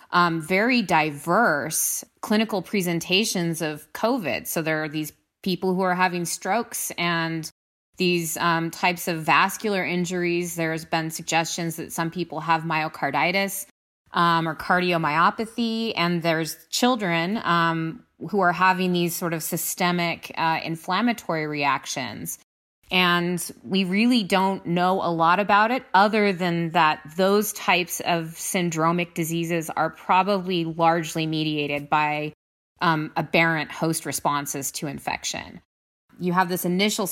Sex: female